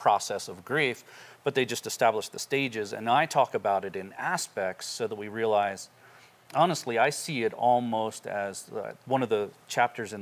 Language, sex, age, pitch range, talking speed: English, male, 40-59, 110-135 Hz, 190 wpm